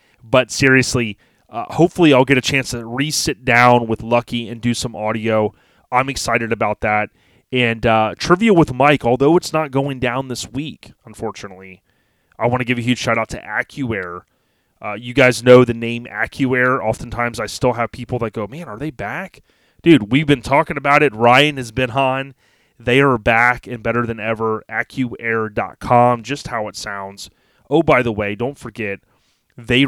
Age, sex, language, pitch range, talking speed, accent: 30-49, male, English, 110-130 Hz, 180 wpm, American